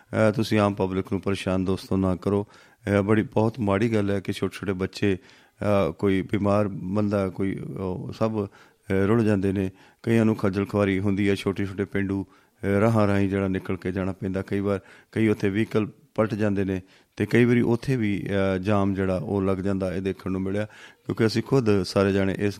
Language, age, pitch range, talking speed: Punjabi, 30-49, 95-105 Hz, 185 wpm